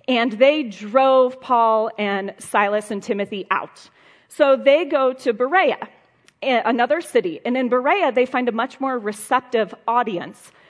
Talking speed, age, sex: 145 wpm, 40-59, female